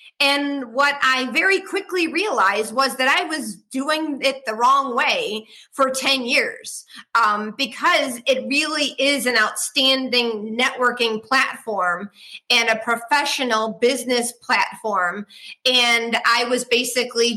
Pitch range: 225-275 Hz